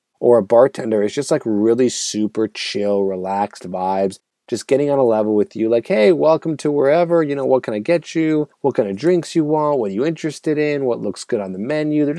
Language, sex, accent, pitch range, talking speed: English, male, American, 105-145 Hz, 235 wpm